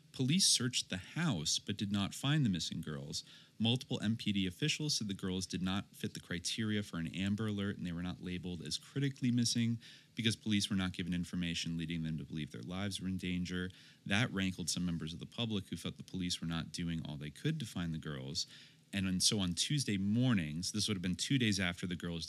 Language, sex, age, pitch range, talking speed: English, male, 30-49, 90-115 Hz, 225 wpm